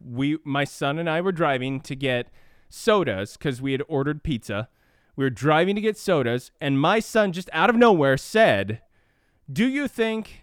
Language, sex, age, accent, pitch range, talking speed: English, male, 20-39, American, 145-195 Hz, 185 wpm